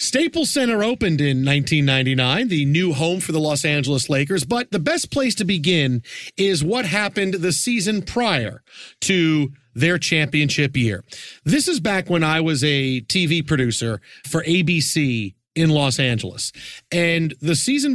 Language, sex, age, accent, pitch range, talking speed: English, male, 40-59, American, 140-175 Hz, 155 wpm